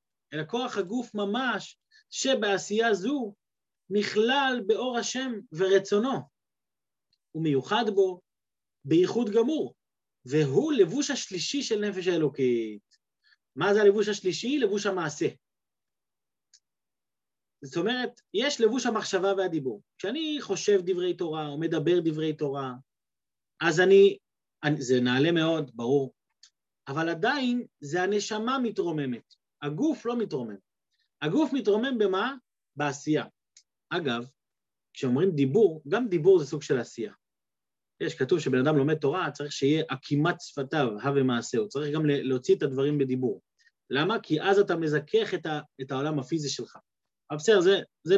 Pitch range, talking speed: 145-230 Hz, 120 wpm